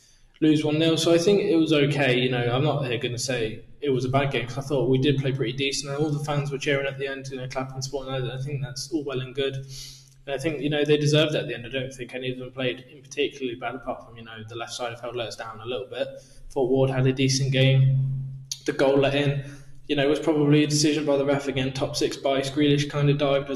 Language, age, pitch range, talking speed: English, 20-39, 125-140 Hz, 285 wpm